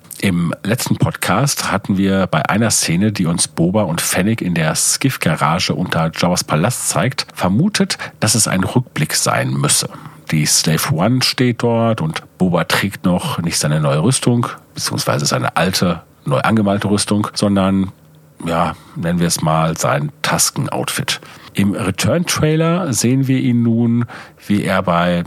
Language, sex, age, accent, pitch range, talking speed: German, male, 40-59, German, 95-135 Hz, 150 wpm